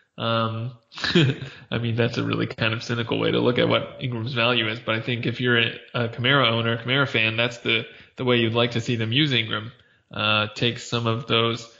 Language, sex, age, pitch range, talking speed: English, male, 20-39, 115-135 Hz, 225 wpm